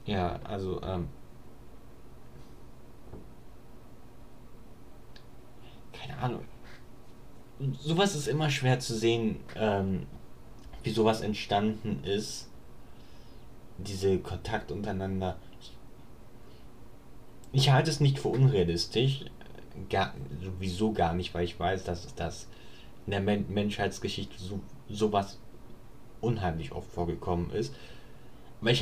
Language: German